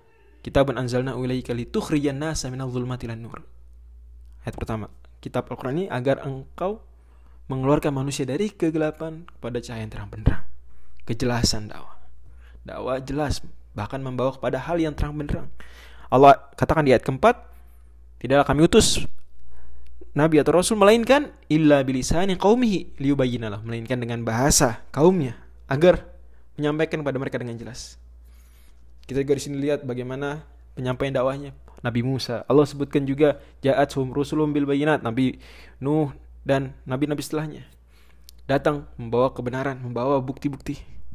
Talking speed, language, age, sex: 115 wpm, Indonesian, 20-39, male